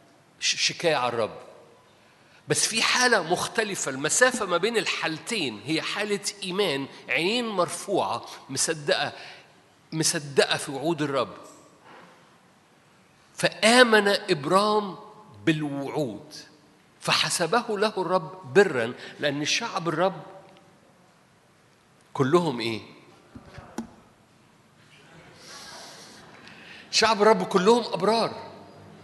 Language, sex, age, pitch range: Arabic, male, 50-69, 160-210 Hz